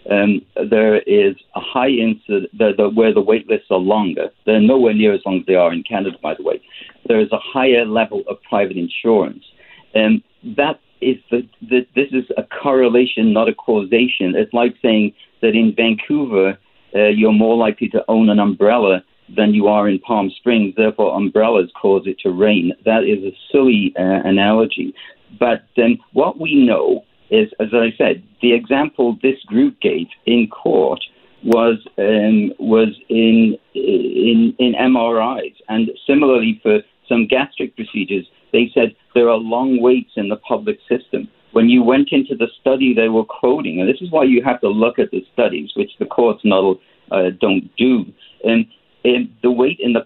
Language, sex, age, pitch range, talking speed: English, male, 50-69, 110-130 Hz, 180 wpm